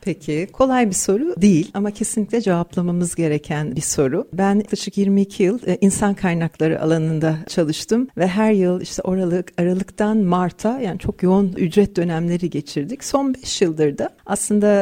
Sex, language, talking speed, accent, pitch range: female, Turkish, 150 wpm, native, 165-215 Hz